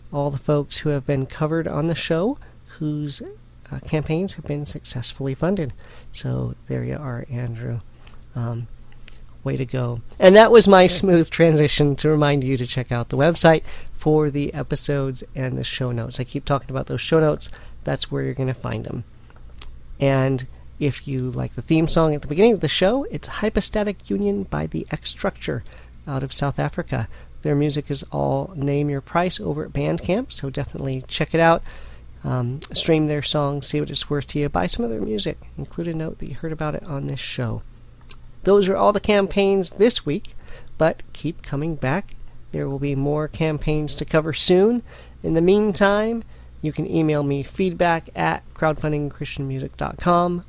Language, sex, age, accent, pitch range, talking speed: English, male, 40-59, American, 130-165 Hz, 185 wpm